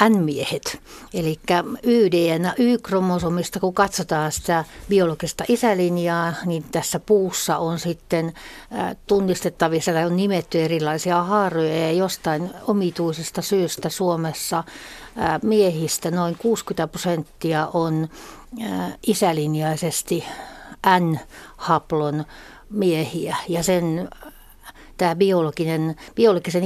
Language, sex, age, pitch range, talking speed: Finnish, female, 60-79, 155-180 Hz, 85 wpm